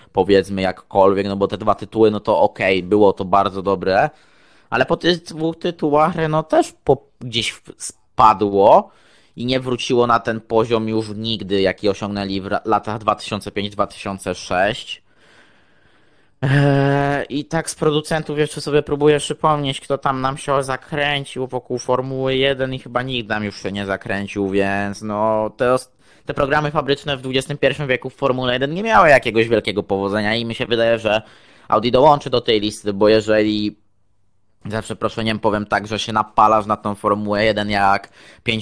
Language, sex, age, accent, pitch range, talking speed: Polish, male, 20-39, native, 105-130 Hz, 160 wpm